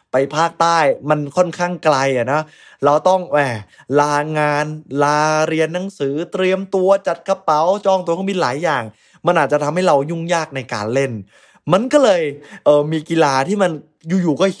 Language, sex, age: Thai, male, 20-39